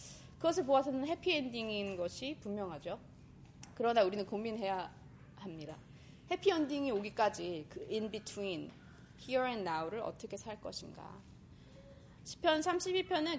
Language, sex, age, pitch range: Korean, female, 20-39, 200-300 Hz